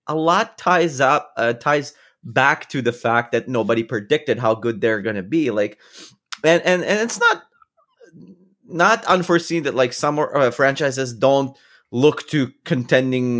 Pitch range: 110-135 Hz